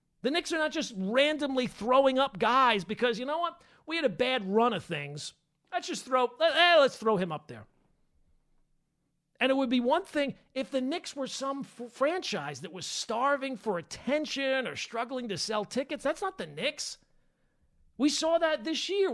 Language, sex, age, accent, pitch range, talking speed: English, male, 40-59, American, 180-280 Hz, 190 wpm